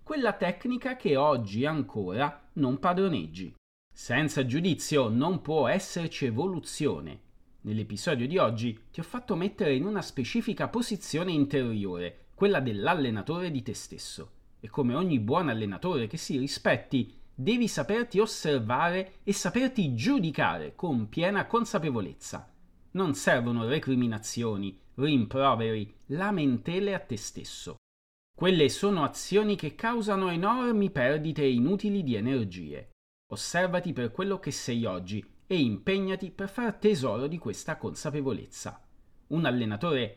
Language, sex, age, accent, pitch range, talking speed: Italian, male, 30-49, native, 120-195 Hz, 120 wpm